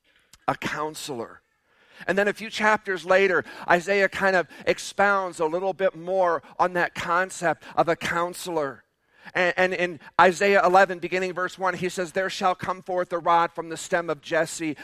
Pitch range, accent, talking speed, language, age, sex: 145-180 Hz, American, 170 wpm, English, 50-69, male